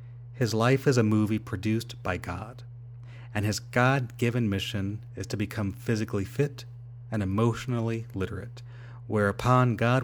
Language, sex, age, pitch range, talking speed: English, male, 30-49, 105-120 Hz, 130 wpm